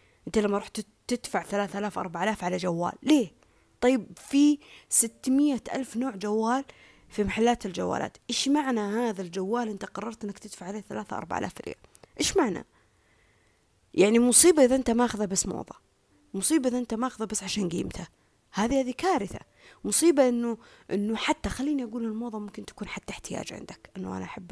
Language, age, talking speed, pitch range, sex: Arabic, 20-39, 160 wpm, 205-300 Hz, female